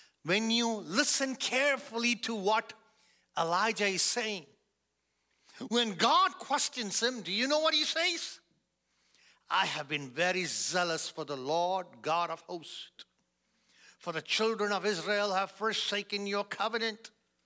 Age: 50-69